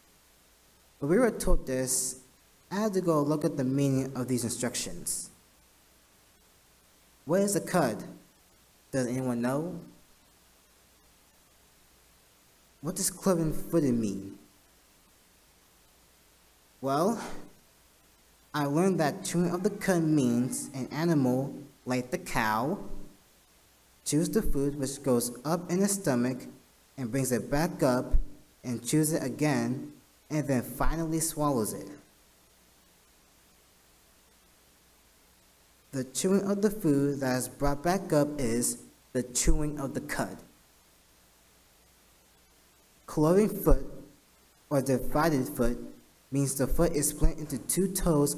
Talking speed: 115 wpm